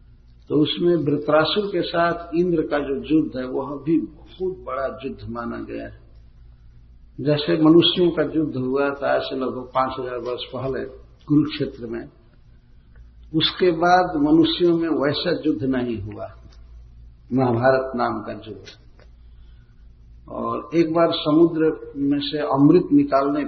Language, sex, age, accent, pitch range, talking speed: Hindi, male, 50-69, native, 115-160 Hz, 135 wpm